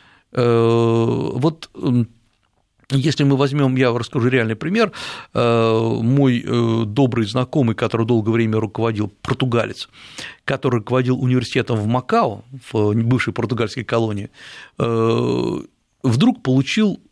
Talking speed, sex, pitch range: 95 wpm, male, 115-160 Hz